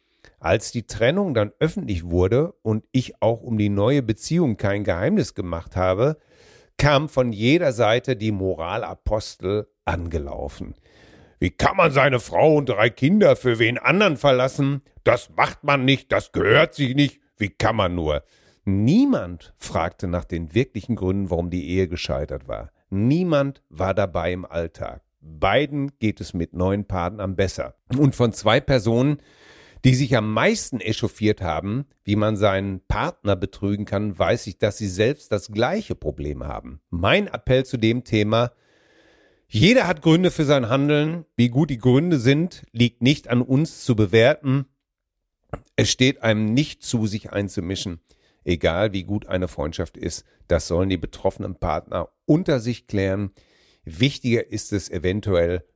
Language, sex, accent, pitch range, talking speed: German, male, German, 95-135 Hz, 155 wpm